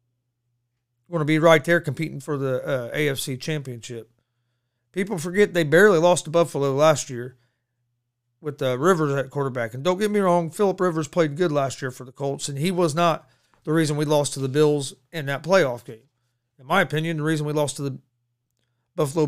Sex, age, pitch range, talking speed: male, 40-59, 120-165 Hz, 200 wpm